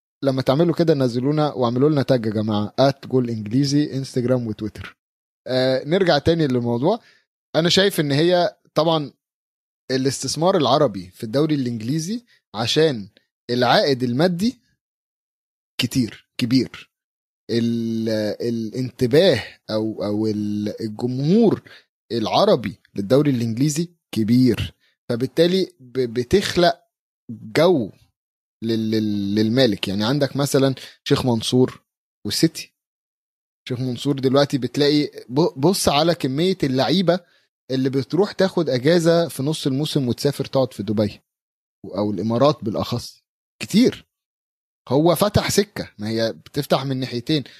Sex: male